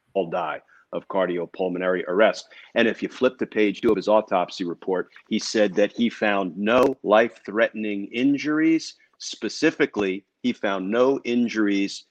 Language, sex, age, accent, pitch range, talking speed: English, male, 50-69, American, 105-130 Hz, 145 wpm